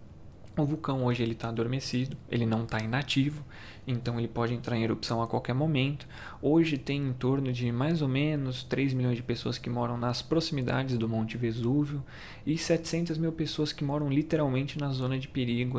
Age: 20-39